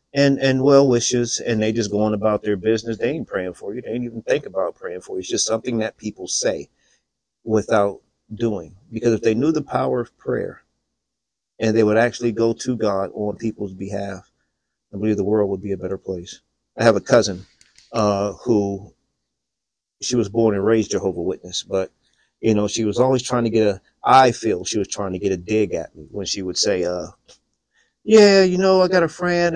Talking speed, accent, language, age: 215 wpm, American, English, 40-59